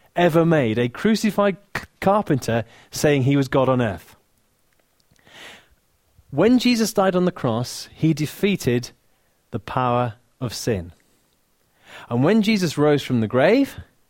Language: English